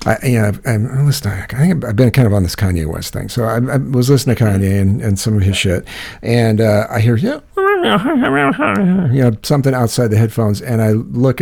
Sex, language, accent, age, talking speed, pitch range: male, English, American, 50-69, 225 wpm, 100-125 Hz